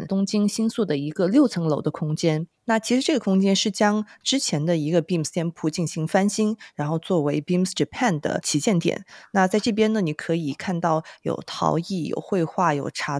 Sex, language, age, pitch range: female, Chinese, 30-49, 155-195 Hz